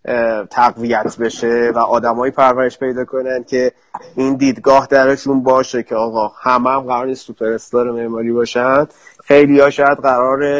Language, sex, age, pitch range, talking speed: Persian, male, 30-49, 125-150 Hz, 135 wpm